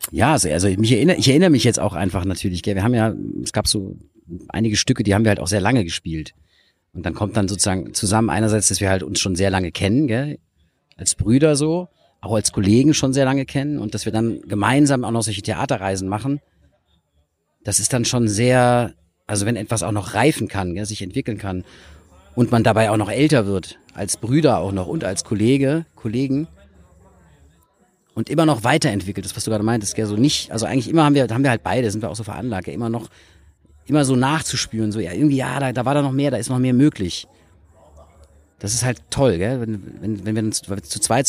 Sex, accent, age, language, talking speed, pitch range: male, German, 40-59, German, 225 wpm, 100-130 Hz